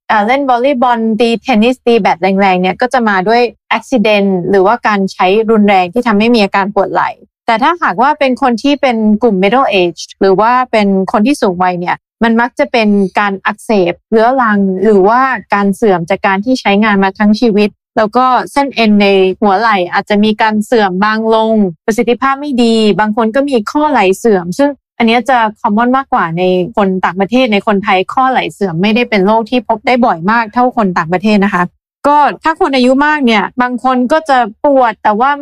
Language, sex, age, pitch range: Thai, female, 20-39, 205-260 Hz